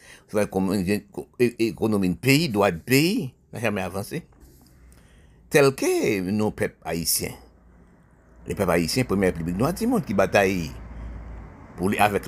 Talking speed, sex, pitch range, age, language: 125 wpm, male, 95-140 Hz, 60-79, French